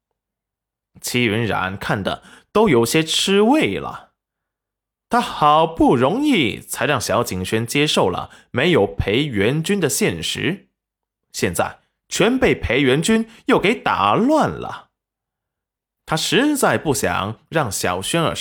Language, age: Chinese, 20-39